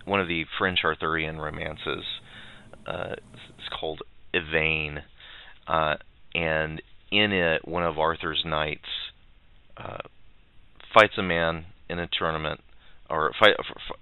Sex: male